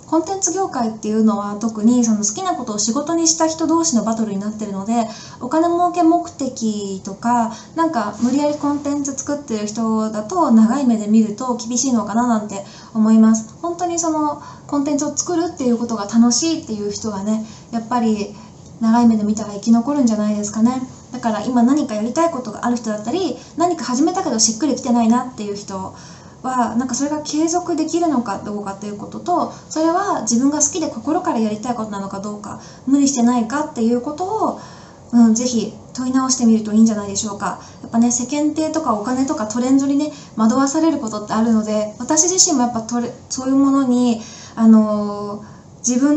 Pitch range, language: 220-295 Hz, Japanese